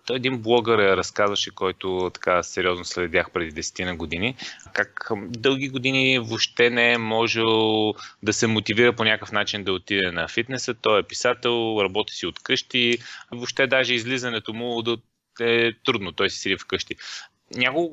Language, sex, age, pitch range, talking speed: Bulgarian, male, 20-39, 105-130 Hz, 150 wpm